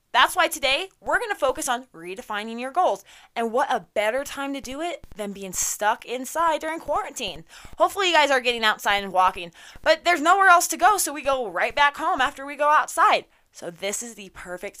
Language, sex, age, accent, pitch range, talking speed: English, female, 20-39, American, 195-295 Hz, 215 wpm